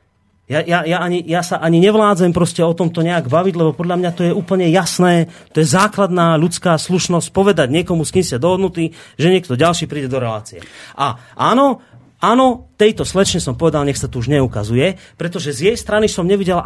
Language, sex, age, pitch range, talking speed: Slovak, male, 30-49, 140-195 Hz, 195 wpm